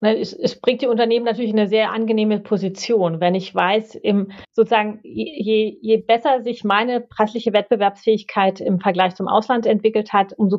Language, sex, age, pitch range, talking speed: German, female, 30-49, 190-220 Hz, 160 wpm